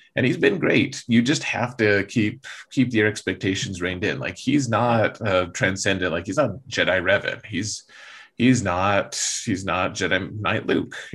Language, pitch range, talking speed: English, 95-120 Hz, 170 wpm